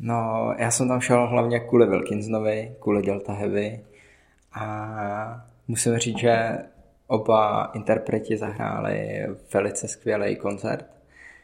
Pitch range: 105-115 Hz